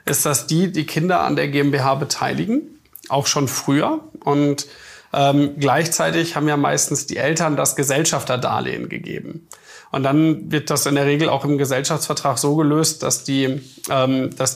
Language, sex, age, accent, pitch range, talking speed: German, male, 40-59, German, 140-160 Hz, 160 wpm